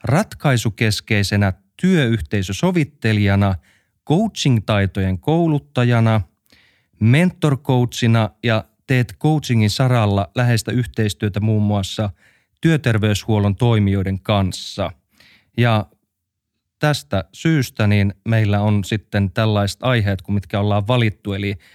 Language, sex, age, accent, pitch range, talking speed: Finnish, male, 30-49, native, 100-125 Hz, 80 wpm